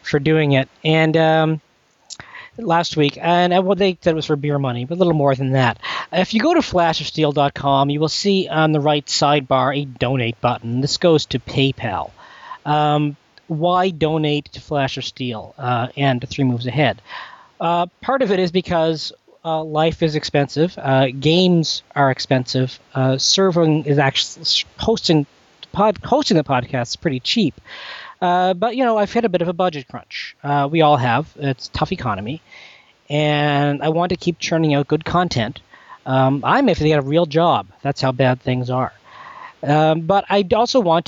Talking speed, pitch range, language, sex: 185 wpm, 135-170 Hz, English, male